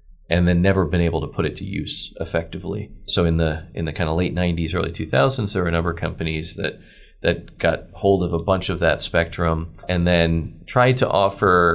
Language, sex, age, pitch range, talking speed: English, male, 30-49, 80-100 Hz, 220 wpm